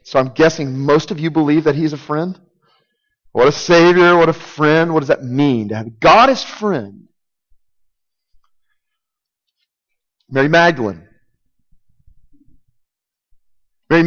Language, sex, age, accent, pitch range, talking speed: English, male, 40-59, American, 110-150 Hz, 125 wpm